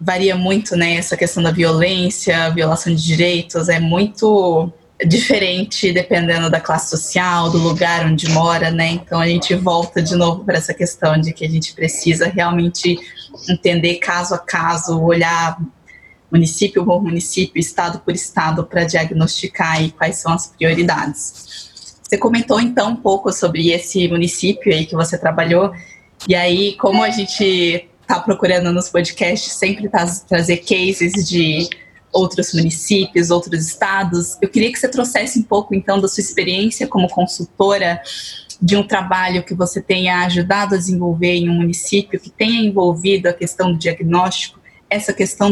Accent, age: Brazilian, 20-39